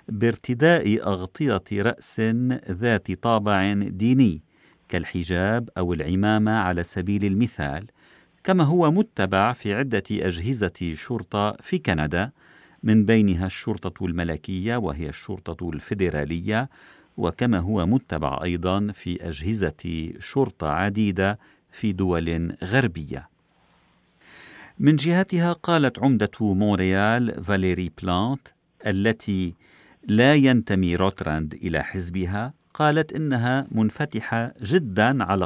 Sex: male